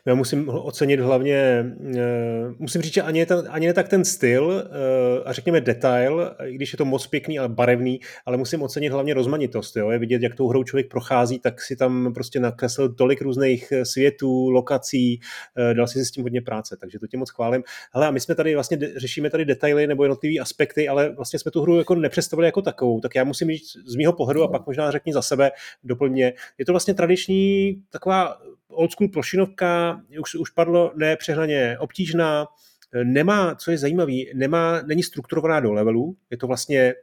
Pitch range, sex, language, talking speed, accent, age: 125-160 Hz, male, Czech, 190 wpm, native, 30-49